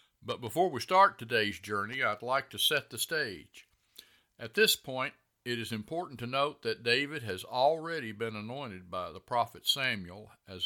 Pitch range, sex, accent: 105-140 Hz, male, American